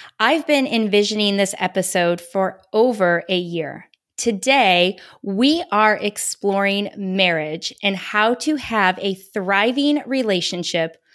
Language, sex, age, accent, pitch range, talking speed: English, female, 20-39, American, 185-240 Hz, 115 wpm